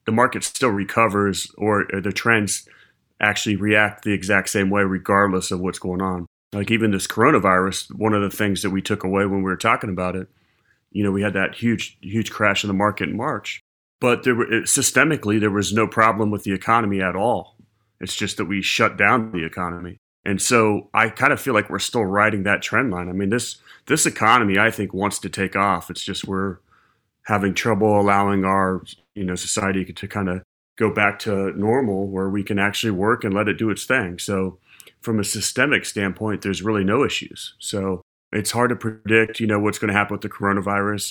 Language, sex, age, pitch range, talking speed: English, male, 30-49, 95-105 Hz, 210 wpm